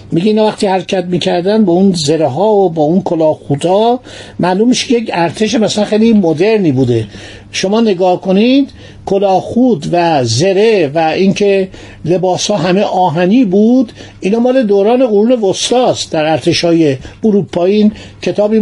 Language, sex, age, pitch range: Persian, male, 50-69, 160-210 Hz